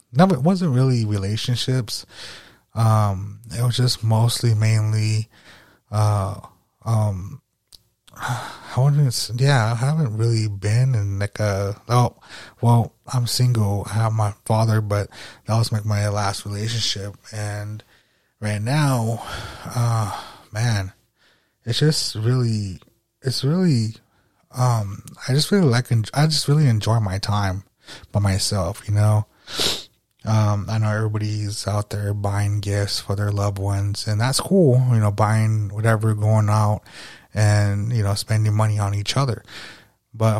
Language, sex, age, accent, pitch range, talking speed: English, male, 30-49, American, 105-120 Hz, 135 wpm